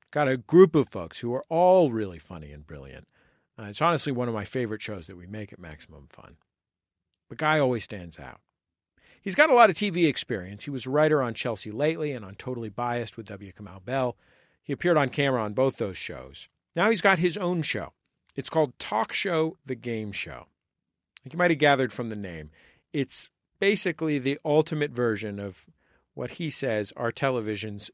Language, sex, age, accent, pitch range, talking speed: English, male, 40-59, American, 105-155 Hz, 200 wpm